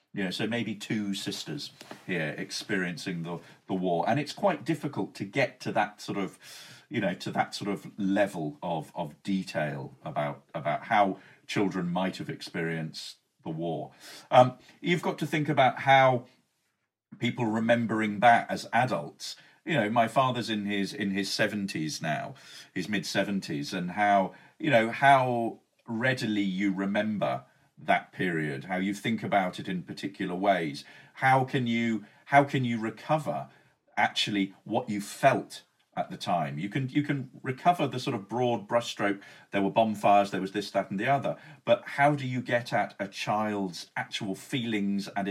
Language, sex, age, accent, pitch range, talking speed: English, male, 50-69, British, 100-135 Hz, 170 wpm